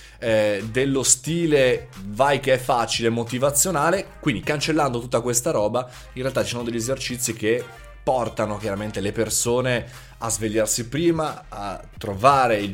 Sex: male